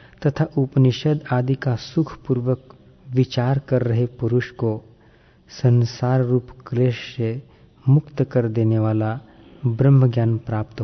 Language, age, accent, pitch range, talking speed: Hindi, 40-59, native, 115-135 Hz, 115 wpm